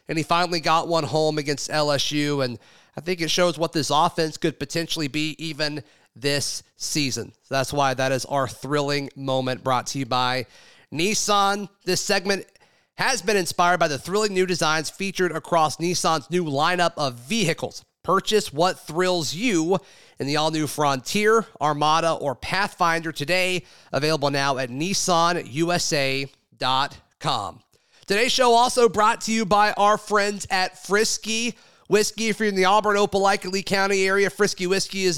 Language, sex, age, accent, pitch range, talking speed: English, male, 30-49, American, 150-195 Hz, 155 wpm